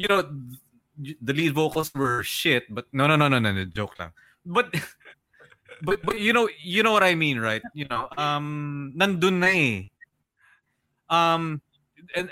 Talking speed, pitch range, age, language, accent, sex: 165 wpm, 120-155 Hz, 20-39, English, Filipino, male